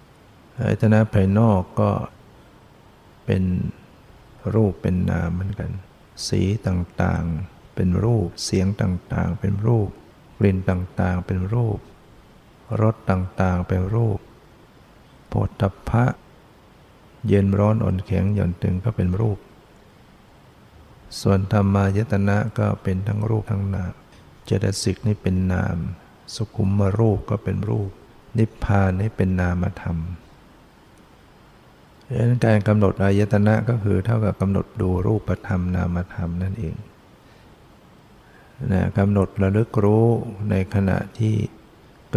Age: 60-79